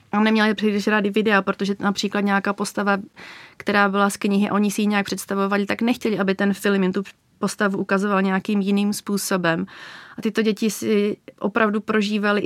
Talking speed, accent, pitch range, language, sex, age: 175 wpm, native, 200-220 Hz, Czech, female, 30-49